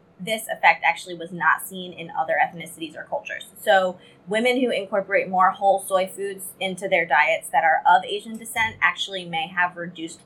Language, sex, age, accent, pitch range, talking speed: English, female, 20-39, American, 175-215 Hz, 180 wpm